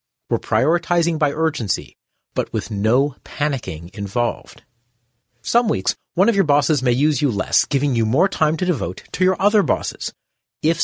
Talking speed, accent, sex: 165 wpm, American, male